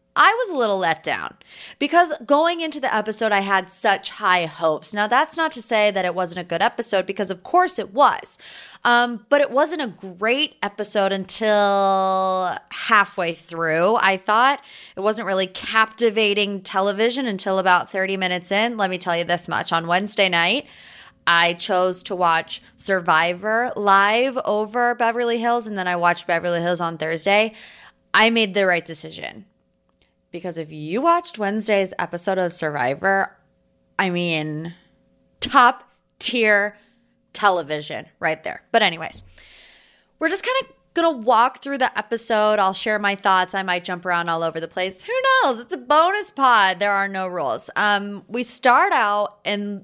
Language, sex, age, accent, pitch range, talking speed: English, female, 20-39, American, 175-230 Hz, 165 wpm